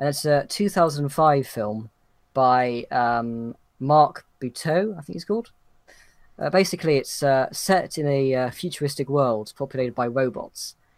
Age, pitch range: 10-29, 125-150 Hz